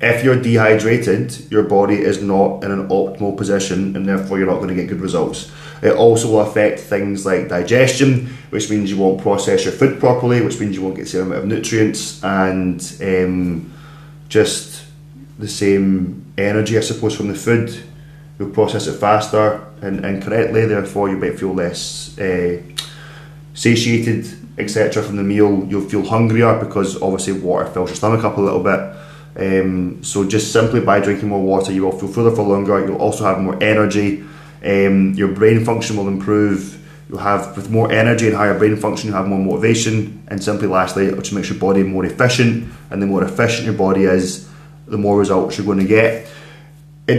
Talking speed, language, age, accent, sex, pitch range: 190 wpm, English, 20-39, British, male, 100-120 Hz